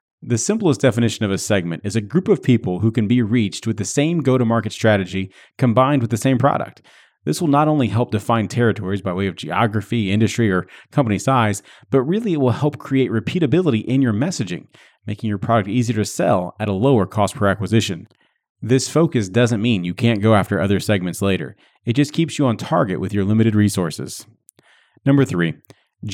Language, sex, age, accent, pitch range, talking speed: English, male, 30-49, American, 105-140 Hz, 195 wpm